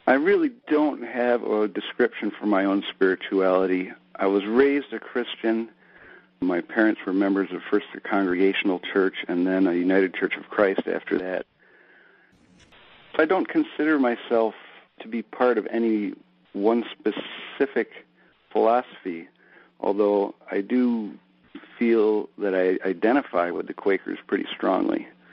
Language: English